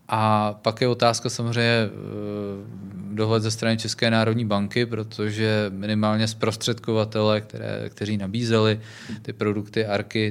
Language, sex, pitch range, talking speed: Czech, male, 100-115 Hz, 110 wpm